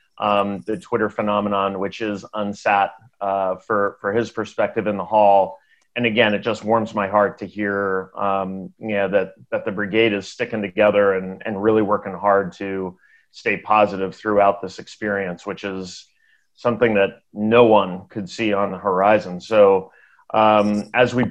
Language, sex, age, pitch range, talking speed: English, male, 30-49, 100-115 Hz, 170 wpm